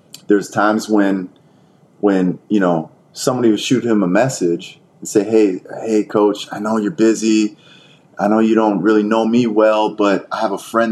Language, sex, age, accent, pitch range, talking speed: English, male, 30-49, American, 90-110 Hz, 185 wpm